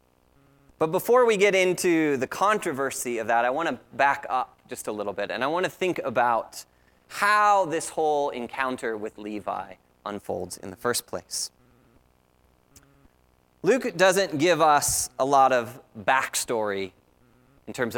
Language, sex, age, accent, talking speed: English, male, 30-49, American, 150 wpm